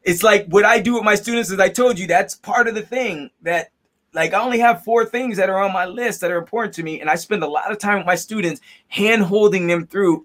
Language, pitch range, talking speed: English, 150-200 Hz, 280 wpm